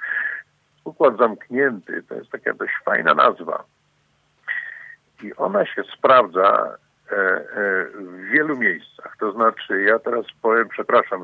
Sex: male